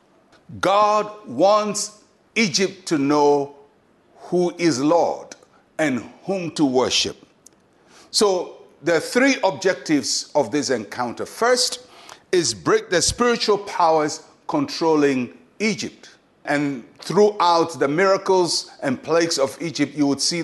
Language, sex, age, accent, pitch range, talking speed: English, male, 60-79, Nigerian, 150-210 Hz, 110 wpm